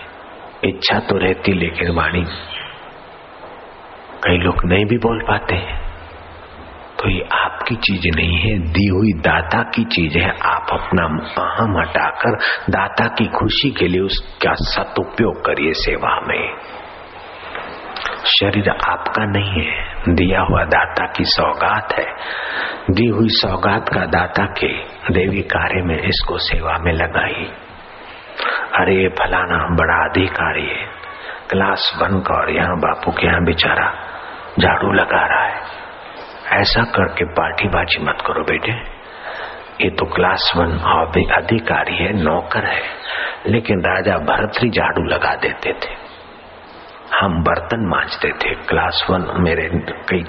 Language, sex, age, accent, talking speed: Hindi, male, 50-69, native, 130 wpm